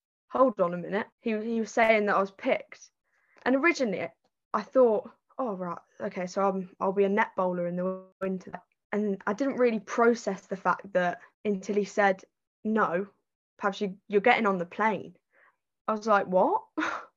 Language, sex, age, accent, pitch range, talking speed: English, female, 10-29, British, 185-245 Hz, 180 wpm